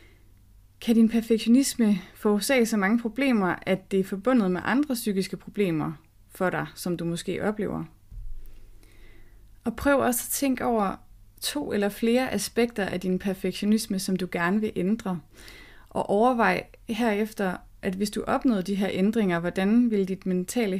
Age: 20-39